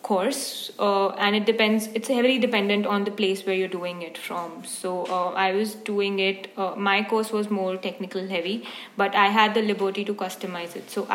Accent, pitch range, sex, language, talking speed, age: Indian, 190-220 Hz, female, English, 205 wpm, 20-39